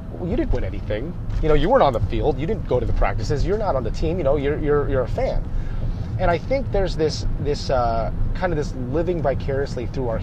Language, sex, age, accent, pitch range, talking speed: English, male, 30-49, American, 105-135 Hz, 250 wpm